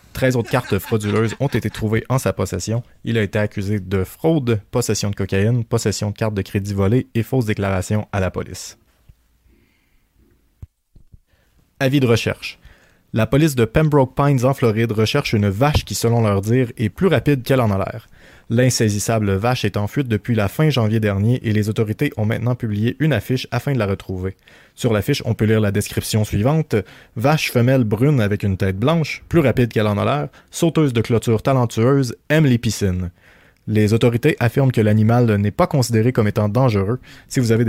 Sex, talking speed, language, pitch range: male, 190 wpm, French, 105-130 Hz